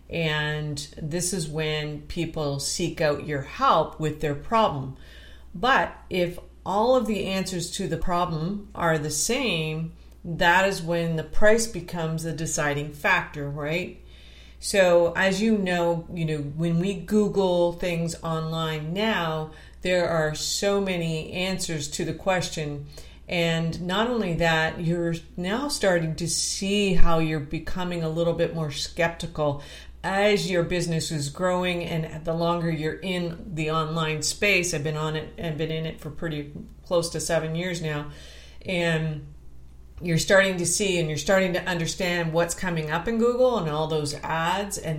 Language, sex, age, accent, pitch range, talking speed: English, female, 50-69, American, 155-180 Hz, 155 wpm